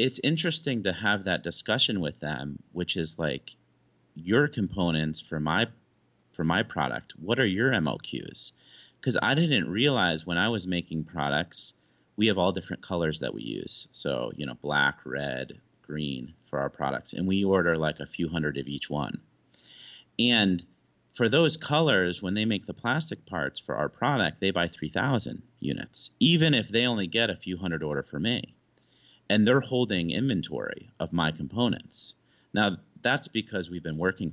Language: English